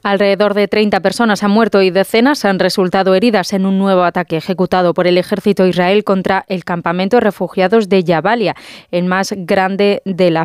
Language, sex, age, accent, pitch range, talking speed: Spanish, female, 20-39, Spanish, 180-205 Hz, 185 wpm